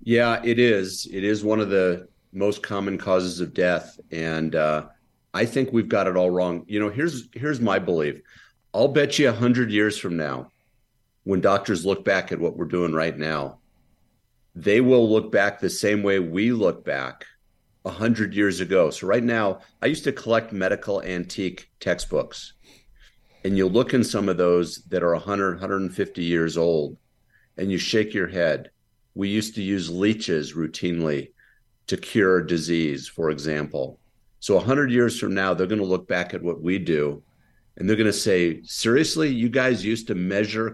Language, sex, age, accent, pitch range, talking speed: English, male, 50-69, American, 90-115 Hz, 180 wpm